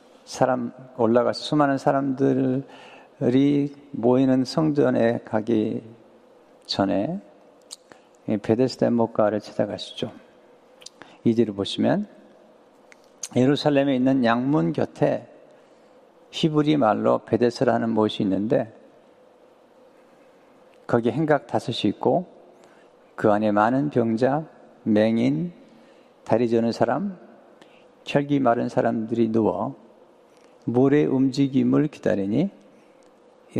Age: 50-69